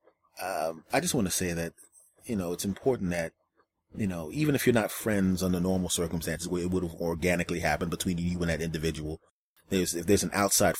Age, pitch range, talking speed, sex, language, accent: 30-49, 85-105 Hz, 210 wpm, male, English, American